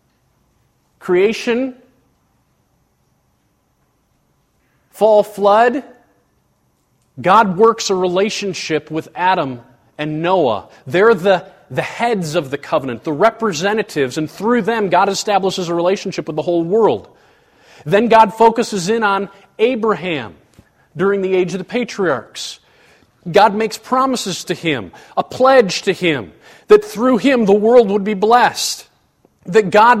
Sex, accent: male, American